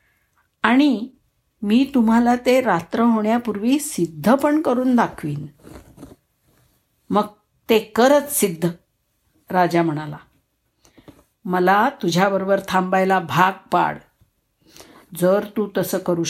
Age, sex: 60-79, female